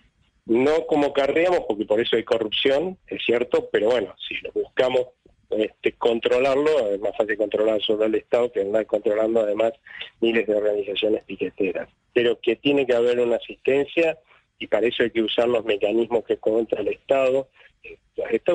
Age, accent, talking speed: 40-59, Argentinian, 170 wpm